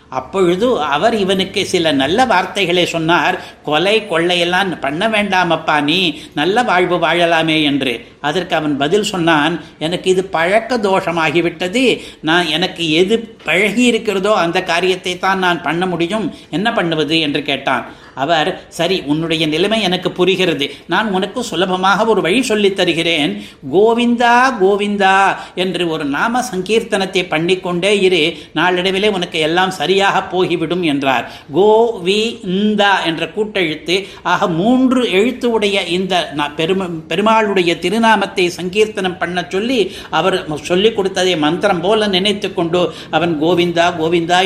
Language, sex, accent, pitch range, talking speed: Tamil, male, native, 165-200 Hz, 115 wpm